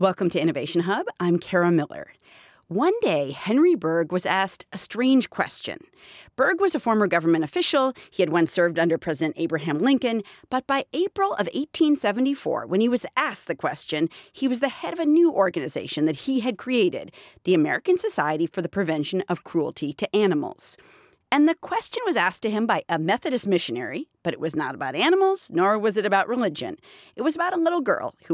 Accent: American